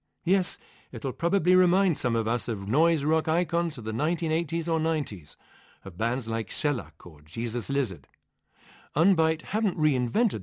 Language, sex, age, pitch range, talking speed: English, male, 50-69, 105-160 Hz, 150 wpm